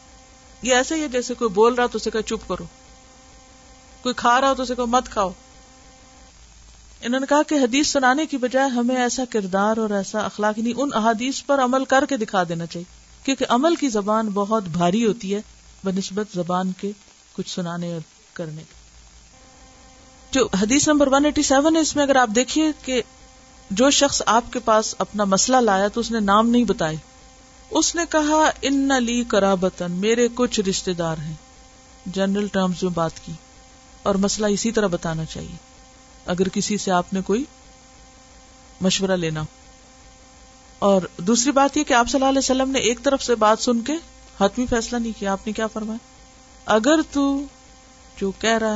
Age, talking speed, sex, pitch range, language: 50-69, 160 wpm, female, 190-260 Hz, Urdu